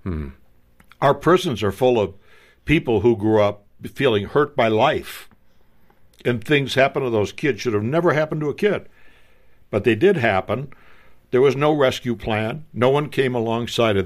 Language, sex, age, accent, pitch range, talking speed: English, male, 60-79, American, 100-135 Hz, 175 wpm